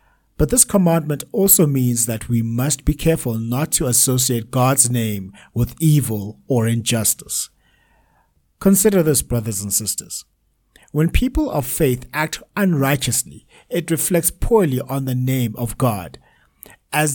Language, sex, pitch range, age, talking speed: English, male, 110-145 Hz, 60-79, 135 wpm